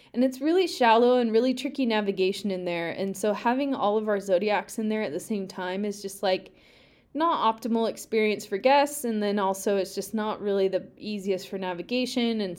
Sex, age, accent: female, 20-39, American